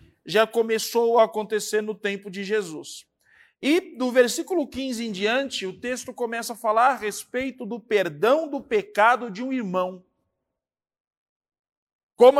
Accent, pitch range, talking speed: Brazilian, 190-250 Hz, 140 wpm